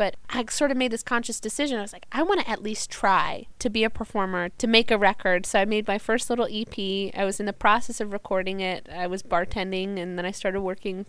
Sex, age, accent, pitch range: female, 20-39, American, 190-235 Hz